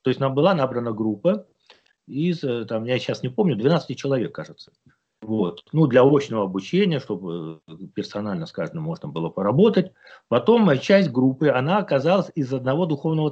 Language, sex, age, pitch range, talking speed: Russian, male, 40-59, 125-170 Hz, 160 wpm